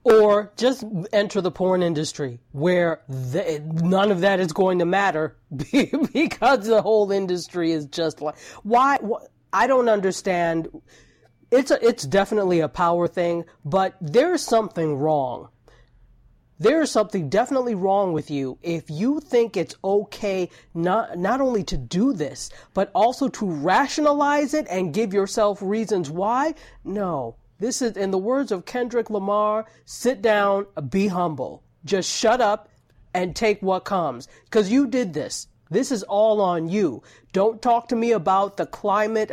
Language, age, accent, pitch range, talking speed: English, 30-49, American, 175-225 Hz, 155 wpm